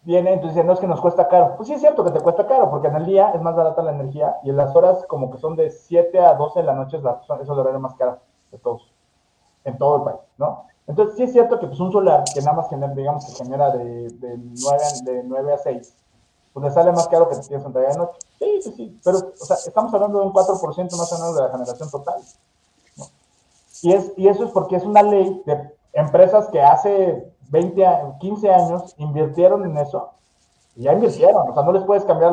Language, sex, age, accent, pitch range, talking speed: Spanish, male, 30-49, Mexican, 150-190 Hz, 250 wpm